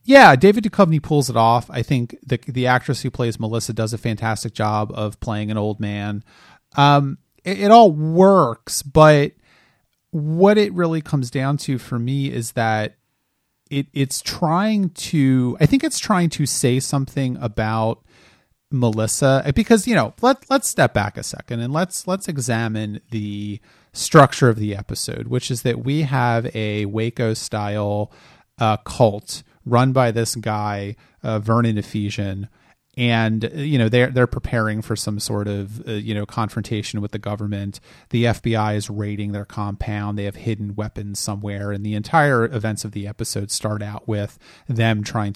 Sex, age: male, 30-49